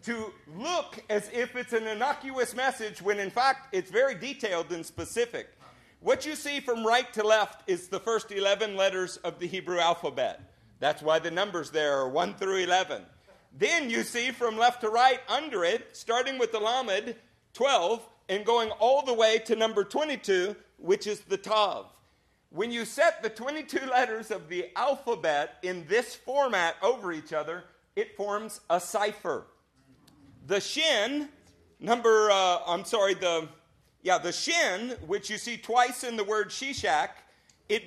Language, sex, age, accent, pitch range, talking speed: English, male, 50-69, American, 195-270 Hz, 165 wpm